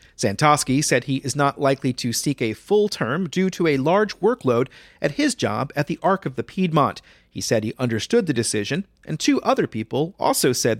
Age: 40-59